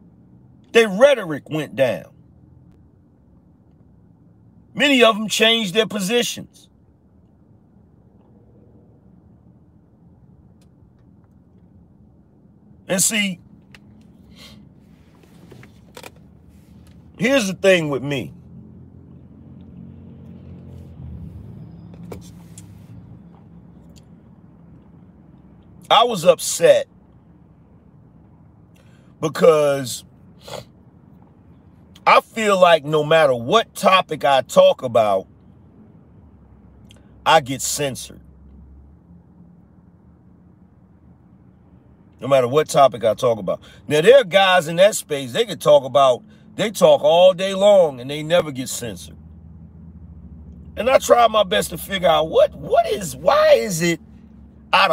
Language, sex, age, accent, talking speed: English, male, 50-69, American, 85 wpm